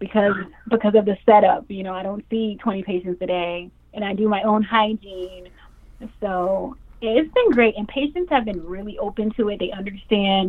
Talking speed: 200 wpm